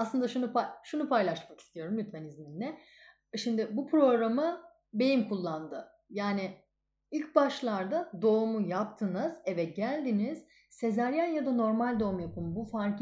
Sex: female